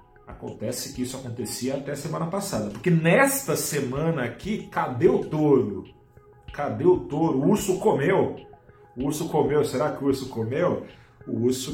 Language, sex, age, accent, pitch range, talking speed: Portuguese, male, 40-59, Brazilian, 110-140 Hz, 155 wpm